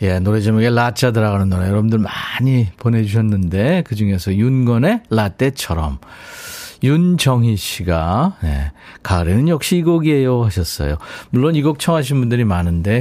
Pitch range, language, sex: 100-140 Hz, Korean, male